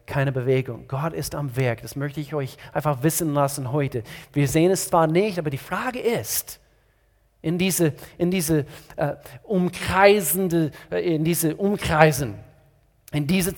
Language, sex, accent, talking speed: German, male, German, 150 wpm